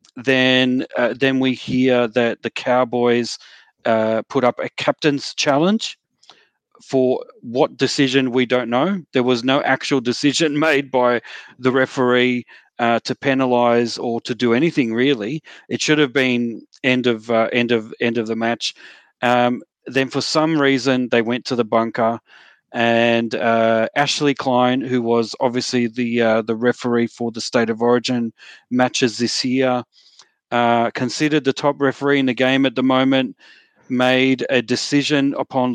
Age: 40-59